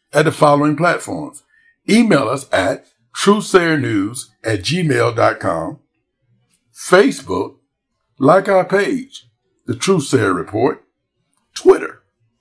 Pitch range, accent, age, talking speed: 115-155 Hz, American, 60-79, 85 wpm